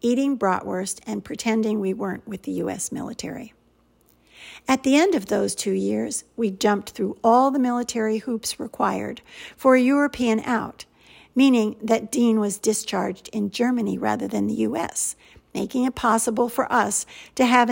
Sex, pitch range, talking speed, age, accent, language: female, 215-255 Hz, 160 wpm, 50-69, American, English